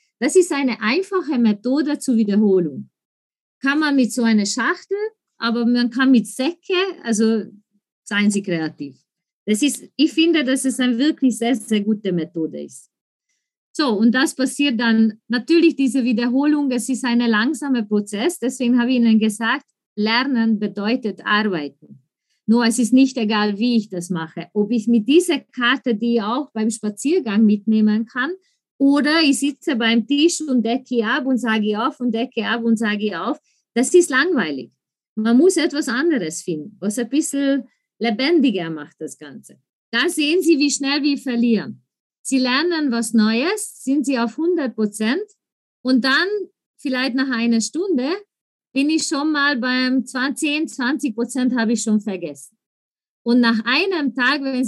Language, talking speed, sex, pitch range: German, 160 wpm, female, 220-285 Hz